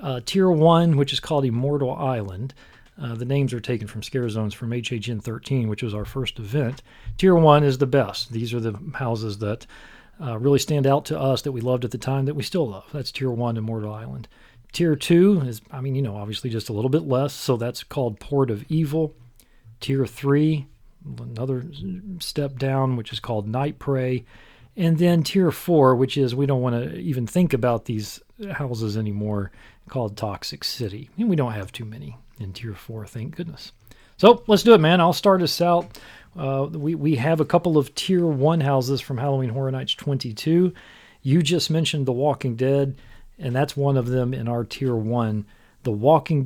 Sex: male